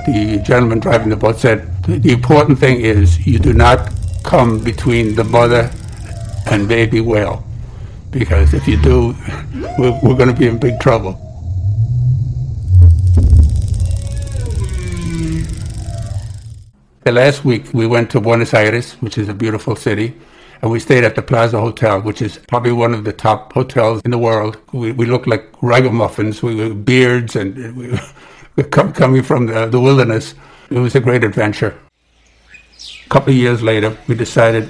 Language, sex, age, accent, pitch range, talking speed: English, male, 60-79, American, 105-125 Hz, 155 wpm